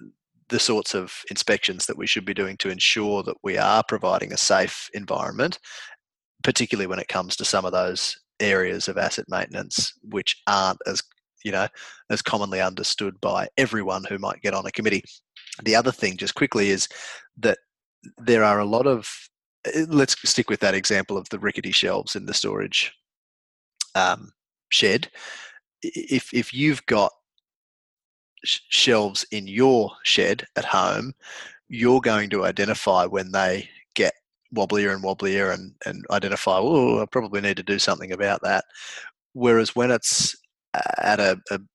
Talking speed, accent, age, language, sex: 160 wpm, Australian, 20-39, English, male